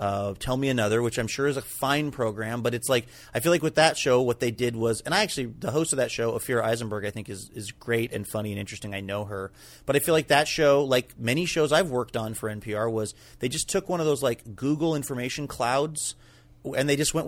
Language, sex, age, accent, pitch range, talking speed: English, male, 30-49, American, 110-155 Hz, 265 wpm